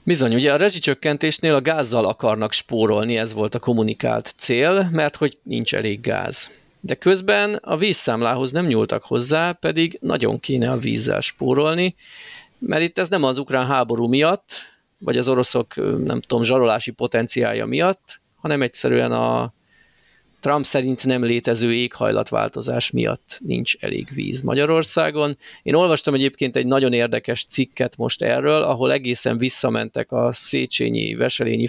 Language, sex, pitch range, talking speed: Hungarian, male, 120-150 Hz, 140 wpm